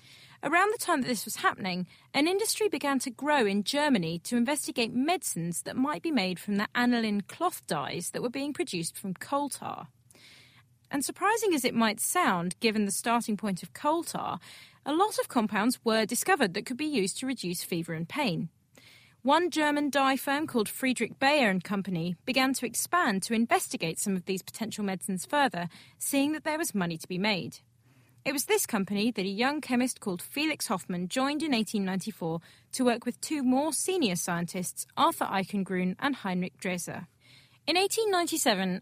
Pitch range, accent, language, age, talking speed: 190-285 Hz, British, English, 30-49, 180 wpm